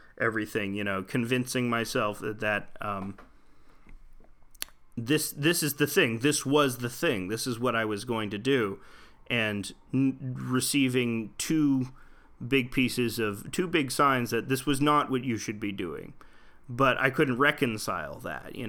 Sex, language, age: male, English, 30-49